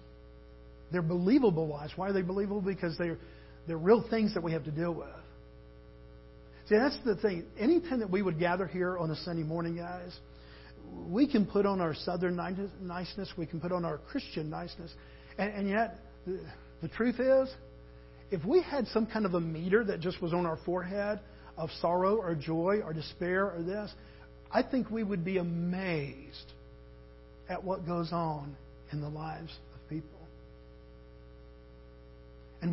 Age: 50-69